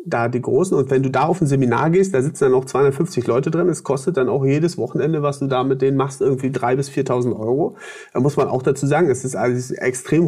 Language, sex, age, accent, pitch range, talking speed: German, male, 40-59, German, 130-160 Hz, 265 wpm